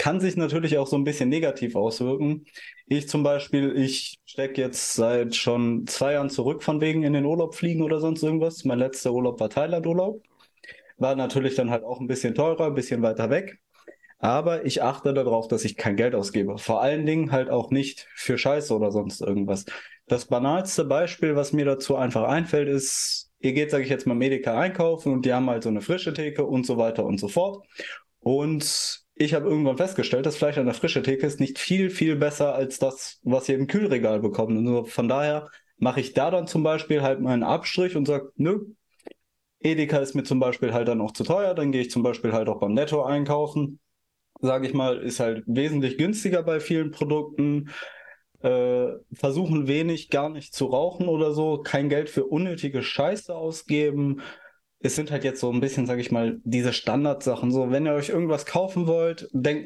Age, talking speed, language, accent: 20-39, 200 wpm, German, German